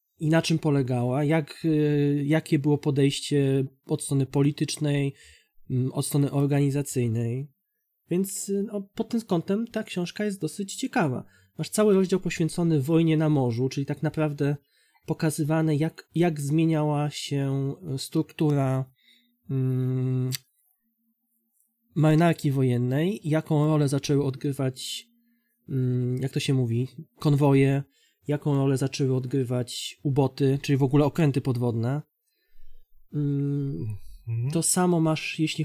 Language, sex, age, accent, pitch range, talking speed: Polish, male, 20-39, native, 140-160 Hz, 115 wpm